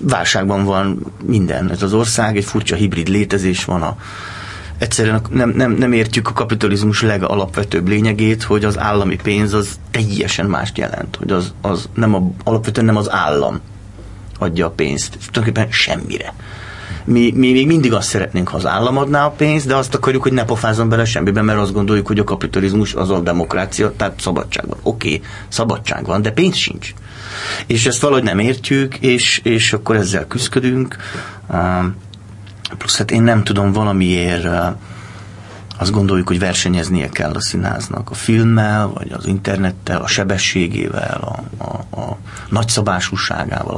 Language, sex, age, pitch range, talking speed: Hungarian, male, 30-49, 95-115 Hz, 160 wpm